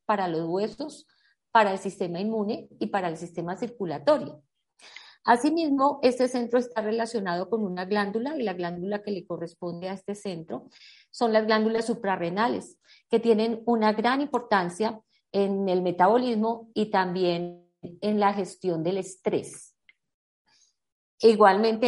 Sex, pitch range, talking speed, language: female, 185-235 Hz, 135 wpm, Spanish